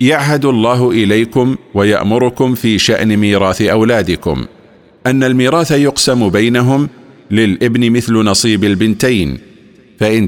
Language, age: Arabic, 50-69